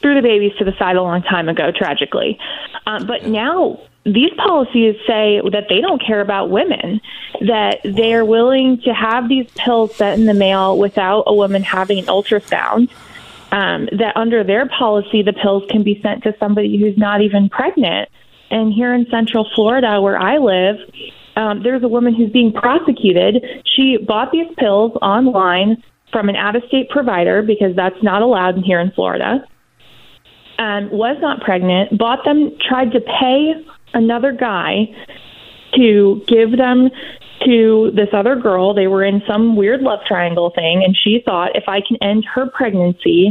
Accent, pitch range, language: American, 200-245 Hz, English